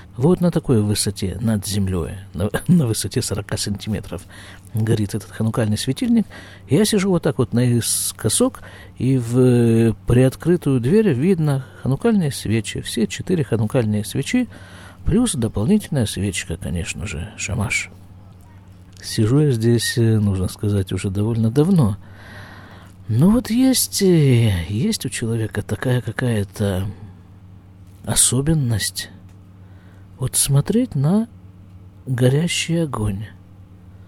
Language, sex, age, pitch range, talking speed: Russian, male, 50-69, 95-135 Hz, 105 wpm